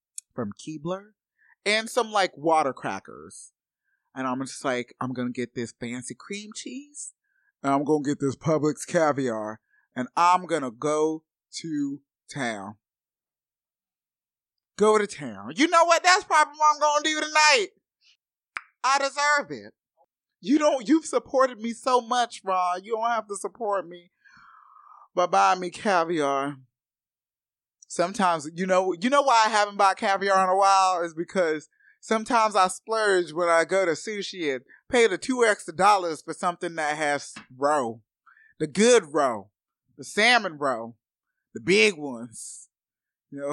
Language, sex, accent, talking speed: English, male, American, 150 wpm